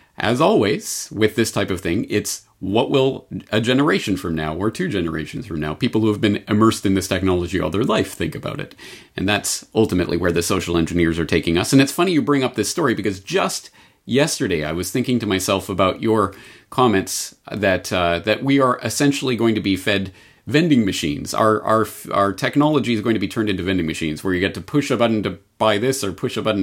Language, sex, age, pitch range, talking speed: English, male, 40-59, 95-120 Hz, 225 wpm